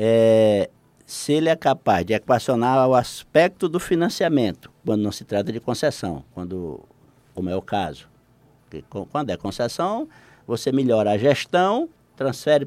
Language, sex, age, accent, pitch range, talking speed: Portuguese, male, 60-79, Brazilian, 110-175 Hz, 145 wpm